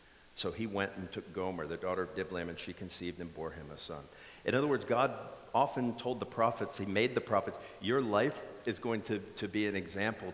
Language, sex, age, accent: English, male, 50-69, American